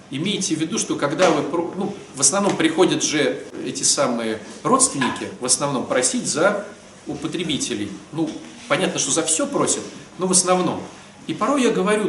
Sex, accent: male, native